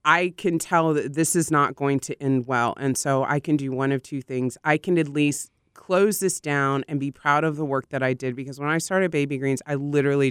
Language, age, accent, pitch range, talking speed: English, 20-39, American, 135-180 Hz, 255 wpm